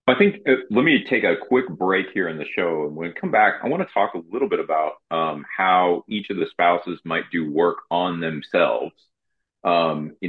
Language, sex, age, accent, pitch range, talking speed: English, male, 30-49, American, 80-100 Hz, 220 wpm